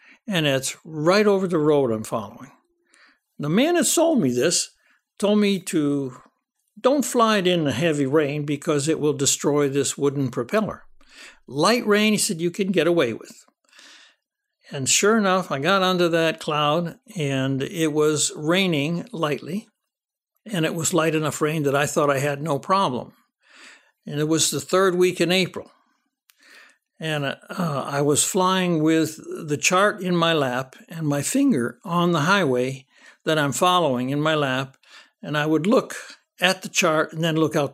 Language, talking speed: English, 170 wpm